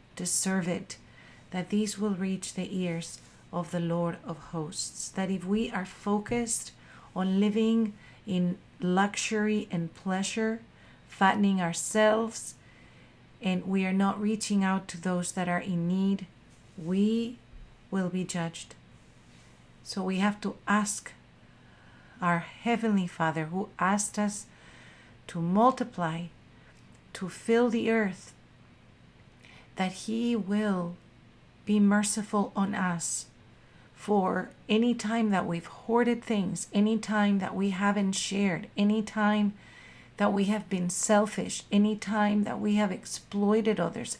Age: 40-59